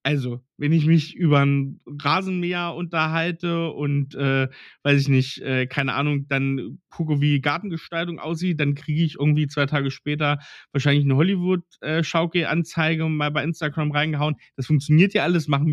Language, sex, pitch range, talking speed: German, male, 135-170 Hz, 165 wpm